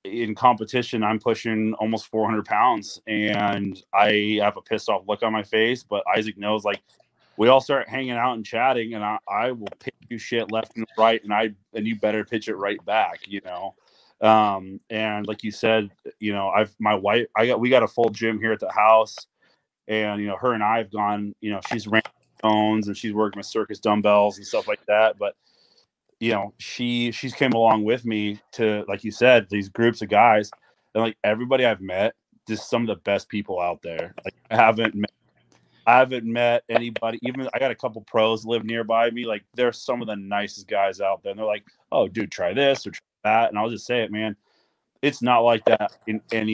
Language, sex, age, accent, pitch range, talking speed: English, male, 30-49, American, 105-115 Hz, 220 wpm